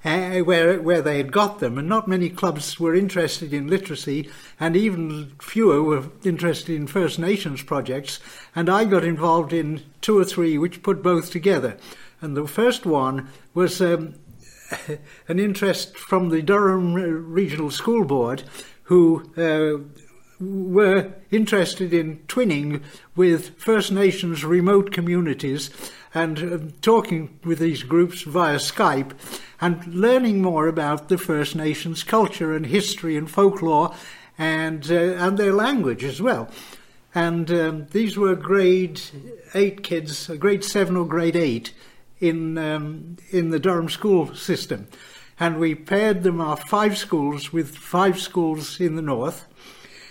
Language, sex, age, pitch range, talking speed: English, male, 60-79, 155-190 Hz, 145 wpm